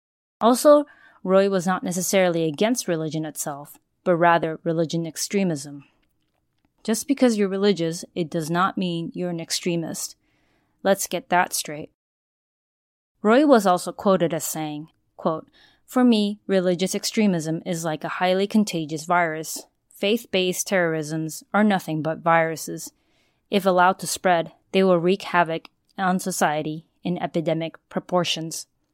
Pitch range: 165-200 Hz